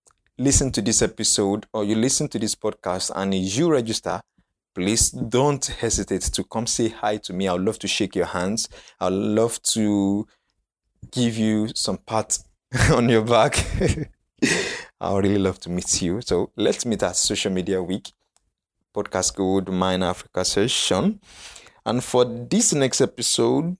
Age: 20-39